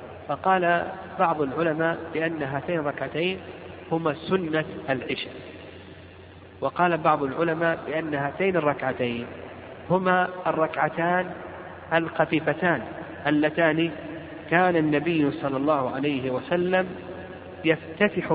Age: 50-69